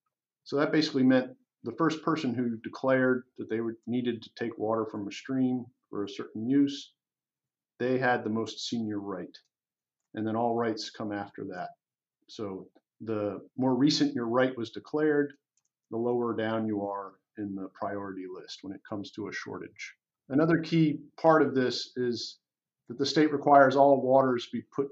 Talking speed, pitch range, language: 175 wpm, 110-140 Hz, English